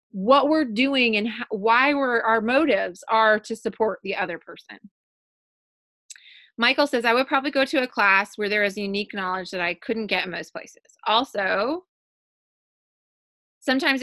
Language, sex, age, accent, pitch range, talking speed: English, female, 20-39, American, 205-275 Hz, 160 wpm